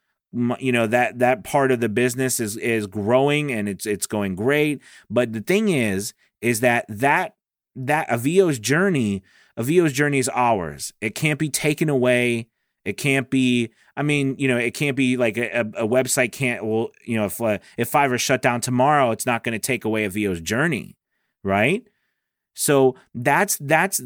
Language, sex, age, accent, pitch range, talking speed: English, male, 30-49, American, 110-135 Hz, 180 wpm